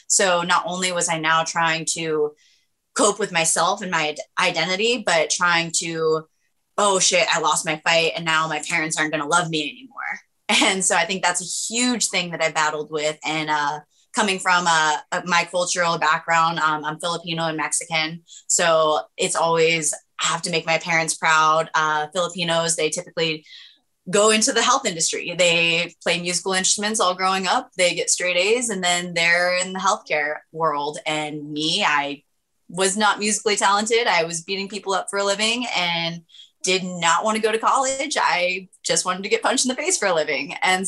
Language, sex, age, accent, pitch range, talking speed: English, female, 20-39, American, 165-205 Hz, 190 wpm